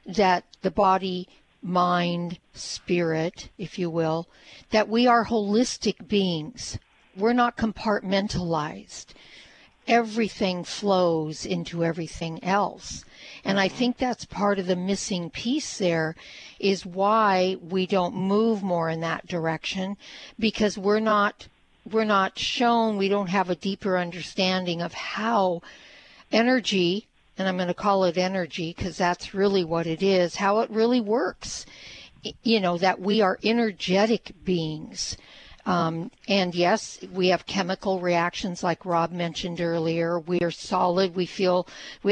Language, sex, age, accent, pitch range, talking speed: English, female, 60-79, American, 175-210 Hz, 135 wpm